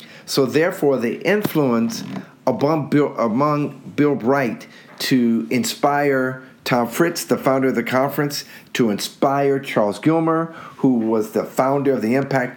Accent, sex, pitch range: American, male, 115-145 Hz